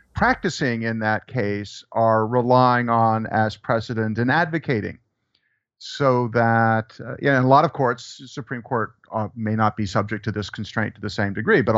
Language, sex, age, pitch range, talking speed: English, male, 50-69, 105-125 Hz, 185 wpm